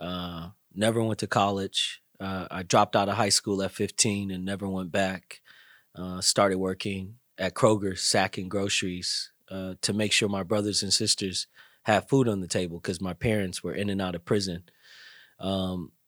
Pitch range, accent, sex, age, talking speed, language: 95-110 Hz, American, male, 30-49, 180 wpm, English